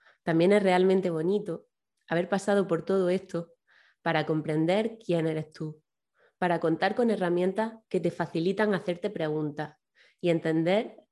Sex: female